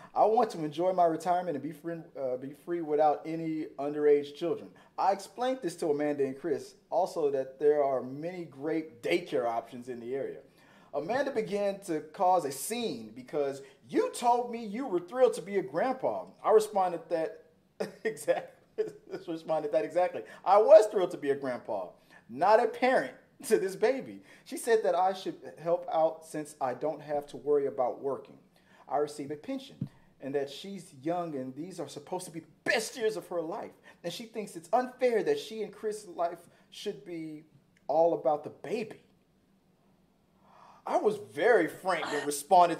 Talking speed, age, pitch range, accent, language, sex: 170 wpm, 40-59, 150-215 Hz, American, English, male